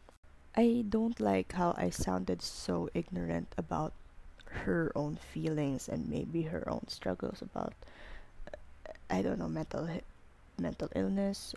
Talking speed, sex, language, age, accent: 135 wpm, female, English, 20-39, Filipino